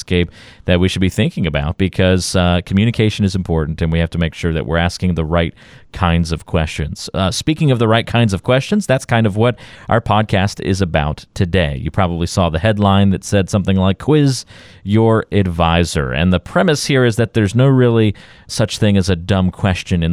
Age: 40-59